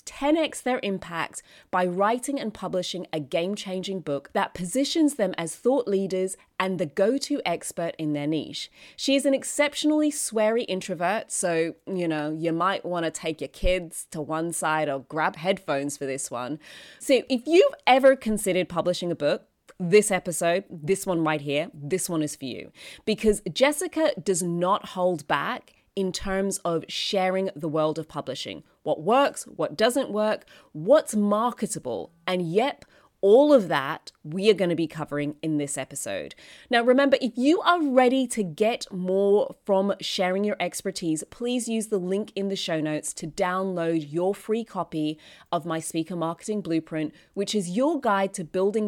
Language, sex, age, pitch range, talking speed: English, female, 20-39, 165-220 Hz, 170 wpm